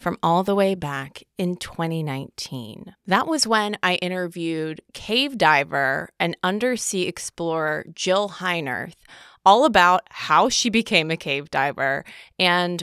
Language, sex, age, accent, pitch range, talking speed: English, female, 20-39, American, 165-205 Hz, 130 wpm